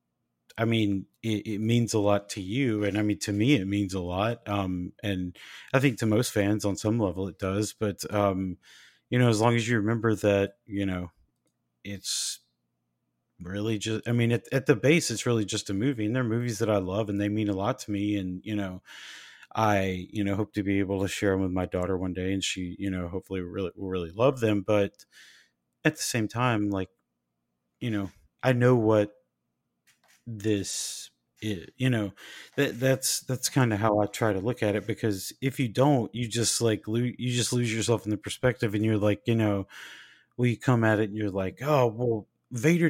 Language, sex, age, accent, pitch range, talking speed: English, male, 30-49, American, 100-120 Hz, 215 wpm